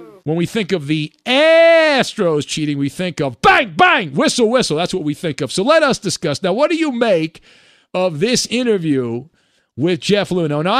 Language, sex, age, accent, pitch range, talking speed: English, male, 50-69, American, 160-235 Hz, 195 wpm